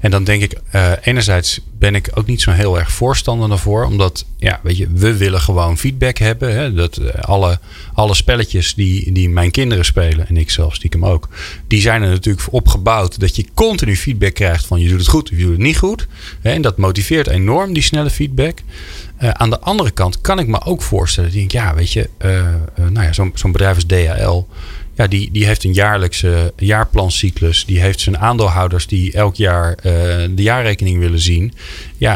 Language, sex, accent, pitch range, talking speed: Dutch, male, Dutch, 90-115 Hz, 205 wpm